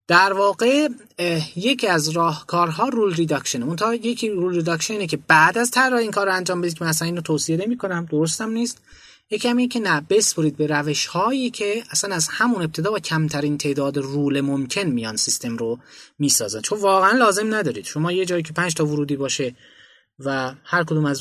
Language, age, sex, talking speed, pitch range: Persian, 30-49, male, 185 wpm, 140-185 Hz